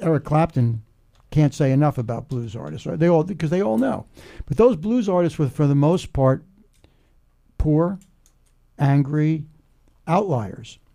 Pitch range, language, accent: 130-170 Hz, English, American